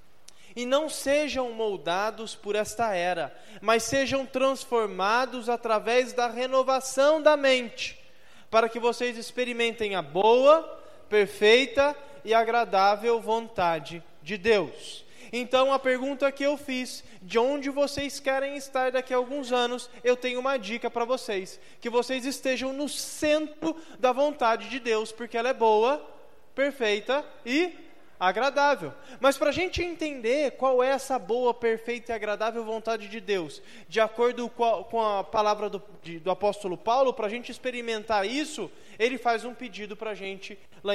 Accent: Brazilian